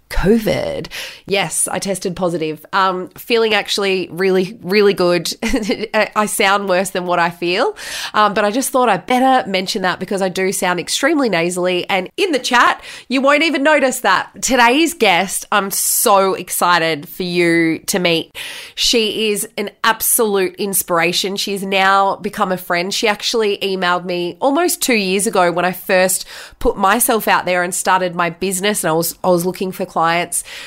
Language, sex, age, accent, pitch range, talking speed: English, female, 20-39, Australian, 180-225 Hz, 175 wpm